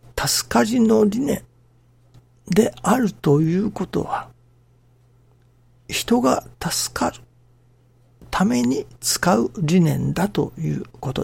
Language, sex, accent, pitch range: Japanese, male, native, 120-160 Hz